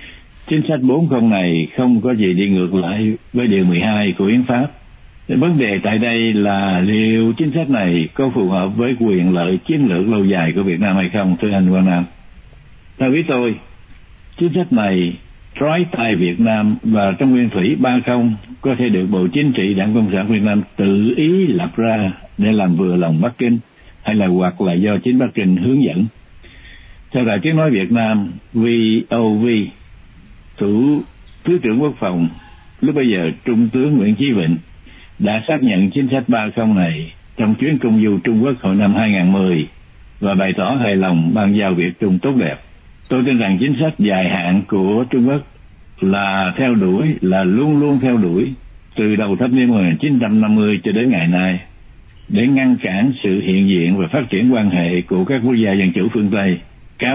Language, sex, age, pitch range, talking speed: Vietnamese, male, 60-79, 95-125 Hz, 195 wpm